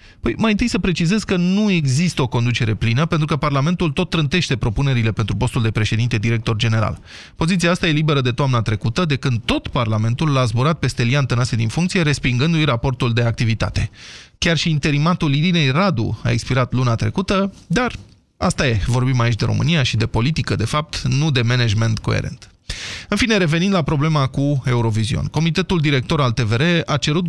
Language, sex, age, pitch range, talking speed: Romanian, male, 20-39, 120-170 Hz, 185 wpm